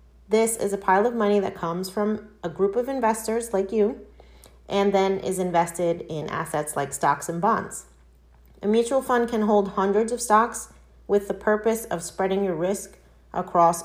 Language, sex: English, female